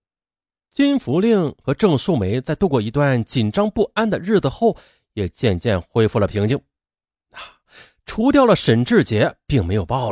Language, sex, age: Chinese, male, 30-49